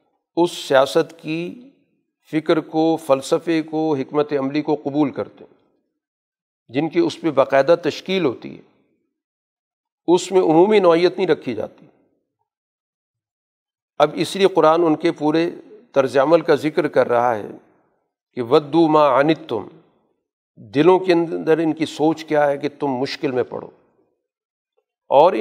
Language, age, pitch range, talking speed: Urdu, 50-69, 150-190 Hz, 140 wpm